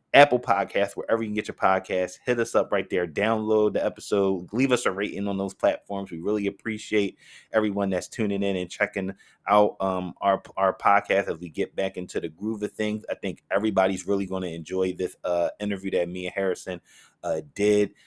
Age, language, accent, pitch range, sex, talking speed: 20-39, English, American, 95-110 Hz, male, 205 wpm